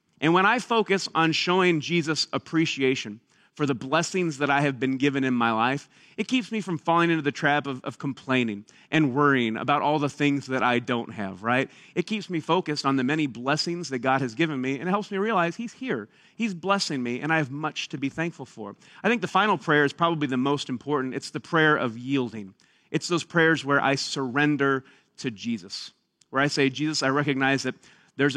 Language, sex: English, male